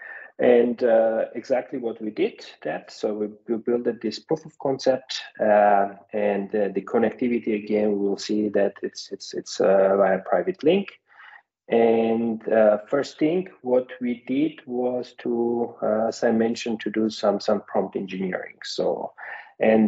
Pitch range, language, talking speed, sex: 100-120 Hz, English, 160 wpm, male